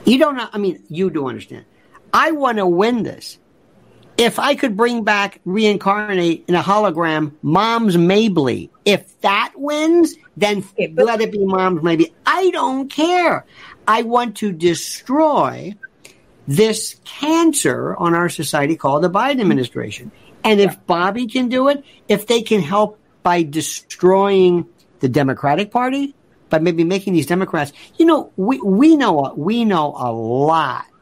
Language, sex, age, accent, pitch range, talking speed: English, male, 50-69, American, 165-265 Hz, 155 wpm